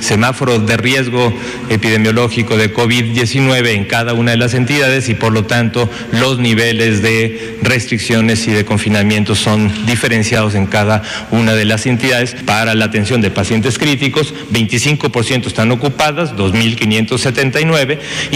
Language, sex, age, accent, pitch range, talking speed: Spanish, male, 40-59, Mexican, 110-130 Hz, 135 wpm